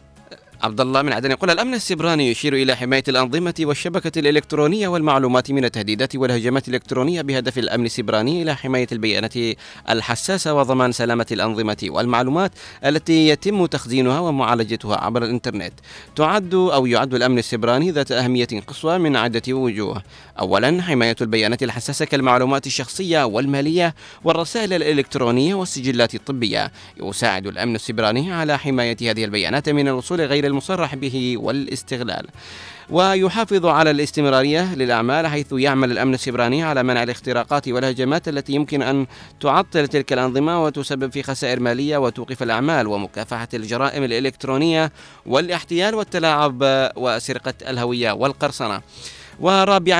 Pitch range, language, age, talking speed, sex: 120-155 Hz, Arabic, 30-49, 125 wpm, male